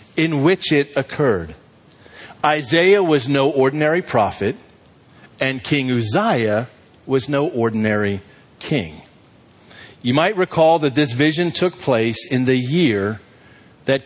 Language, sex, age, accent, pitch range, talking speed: English, male, 50-69, American, 120-165 Hz, 120 wpm